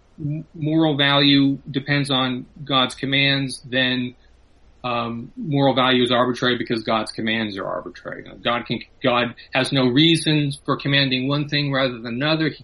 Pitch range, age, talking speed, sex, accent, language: 120-150 Hz, 30-49, 145 wpm, male, American, English